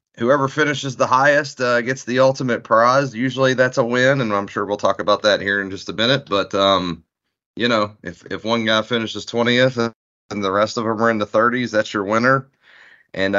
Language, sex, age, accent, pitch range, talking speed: English, male, 30-49, American, 95-110 Hz, 215 wpm